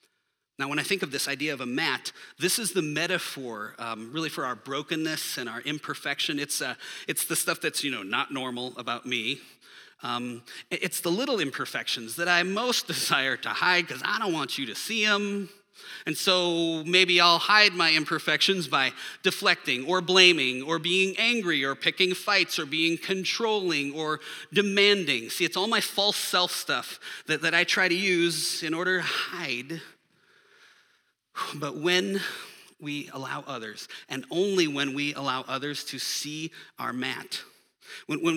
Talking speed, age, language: 170 wpm, 30-49, English